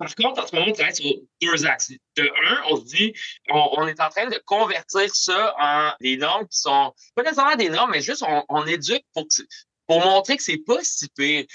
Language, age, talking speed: French, 30-49, 240 wpm